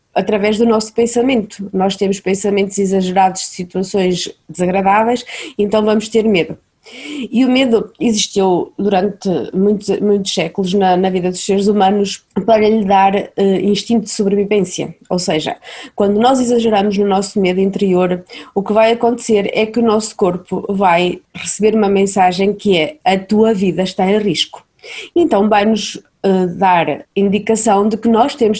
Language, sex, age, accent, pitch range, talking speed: Portuguese, female, 20-39, Brazilian, 185-220 Hz, 155 wpm